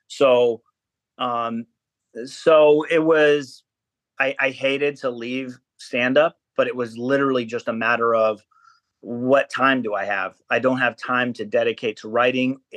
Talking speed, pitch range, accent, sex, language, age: 155 wpm, 115-130 Hz, American, male, English, 30-49